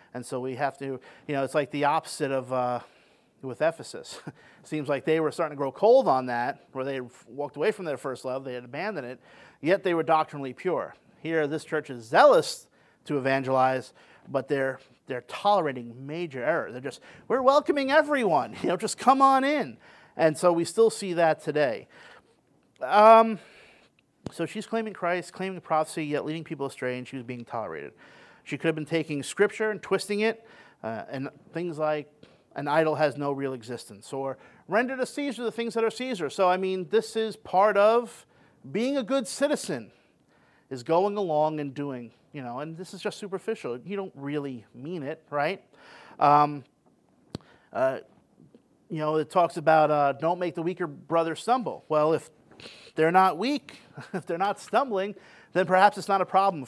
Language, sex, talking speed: English, male, 185 wpm